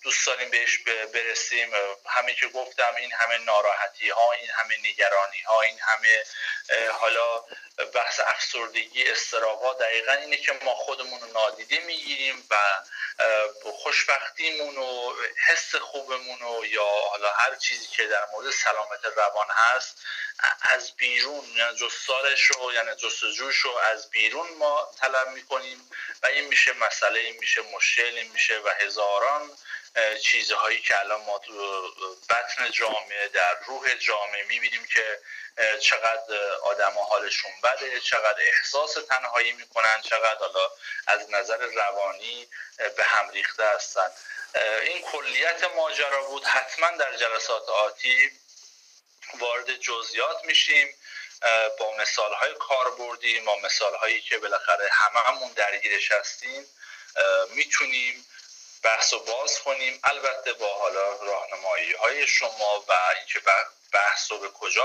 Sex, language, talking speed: male, Persian, 125 wpm